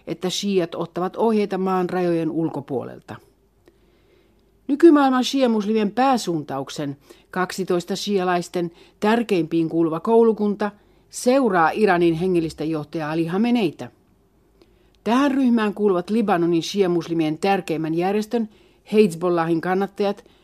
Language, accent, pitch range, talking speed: Finnish, native, 165-210 Hz, 85 wpm